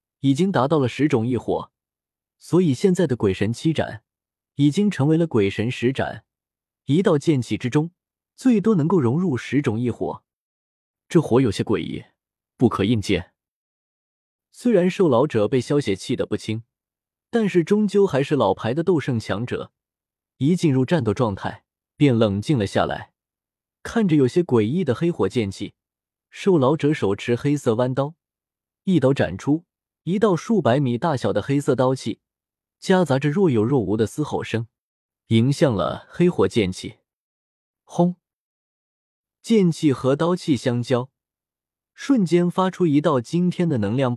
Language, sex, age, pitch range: Chinese, male, 20-39, 110-170 Hz